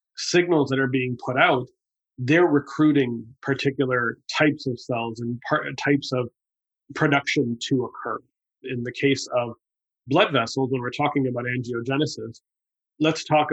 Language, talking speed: English, 140 wpm